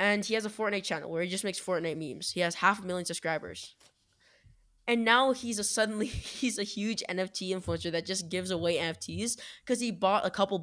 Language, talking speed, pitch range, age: English, 215 wpm, 170-215 Hz, 10-29